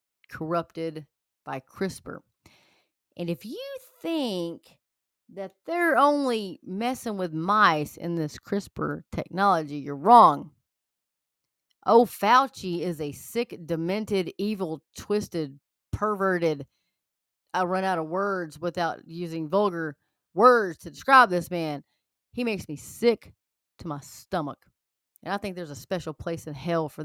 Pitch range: 165-210 Hz